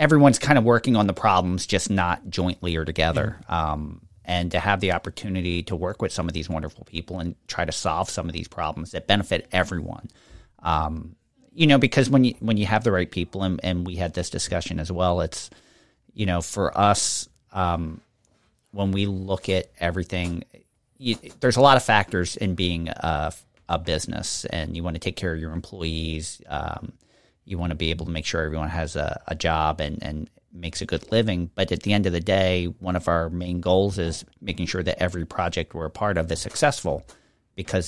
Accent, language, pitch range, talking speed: American, English, 85-105 Hz, 210 wpm